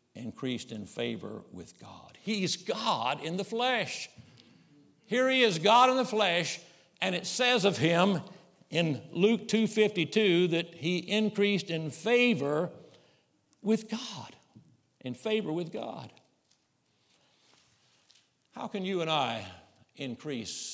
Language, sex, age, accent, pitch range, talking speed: English, male, 60-79, American, 125-175 Hz, 120 wpm